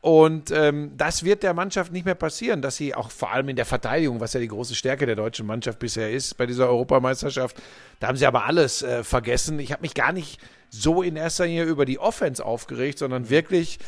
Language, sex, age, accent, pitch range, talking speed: German, male, 40-59, German, 135-170 Hz, 225 wpm